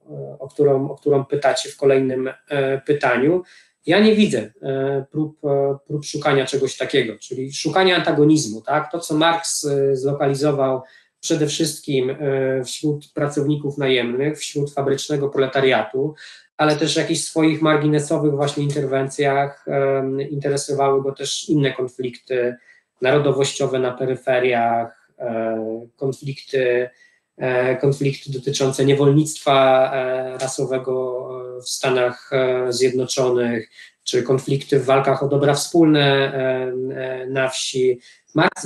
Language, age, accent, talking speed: Polish, 20-39, native, 110 wpm